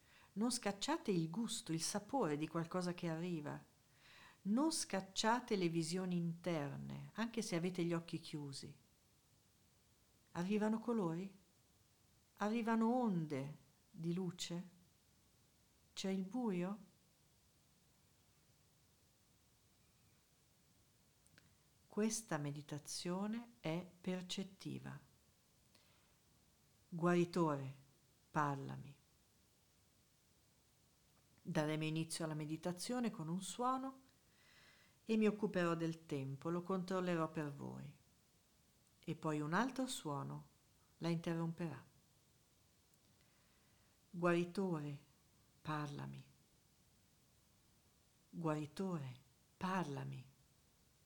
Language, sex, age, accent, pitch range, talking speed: Italian, female, 50-69, native, 145-190 Hz, 75 wpm